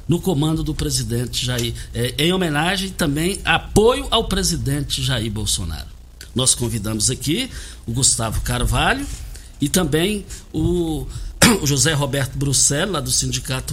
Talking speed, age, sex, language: 120 wpm, 60-79, male, Portuguese